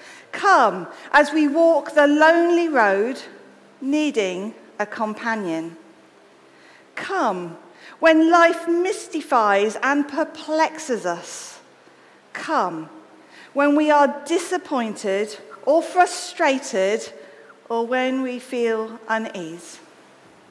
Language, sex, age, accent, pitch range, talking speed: English, female, 50-69, British, 195-295 Hz, 85 wpm